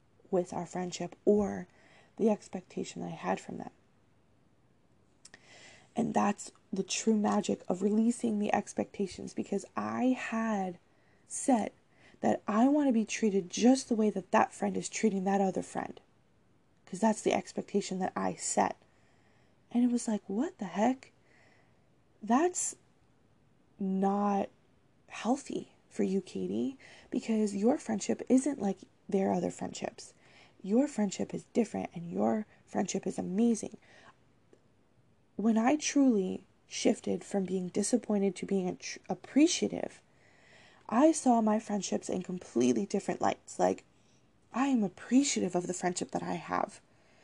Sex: female